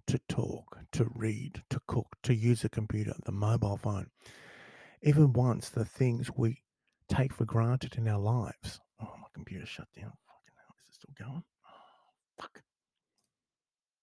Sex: male